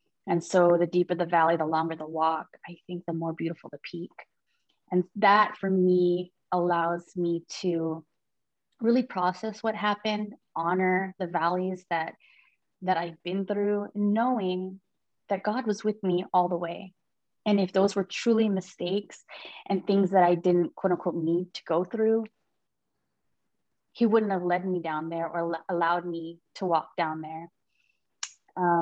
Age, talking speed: 20-39, 160 wpm